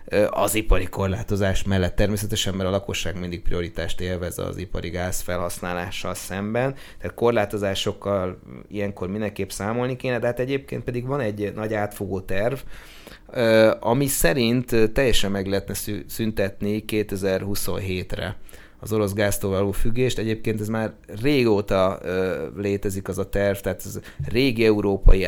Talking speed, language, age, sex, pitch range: 130 wpm, Hungarian, 30-49, male, 90-105 Hz